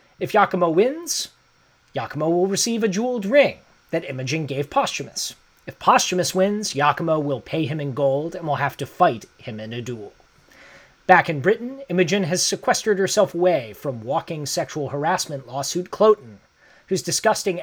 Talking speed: 160 wpm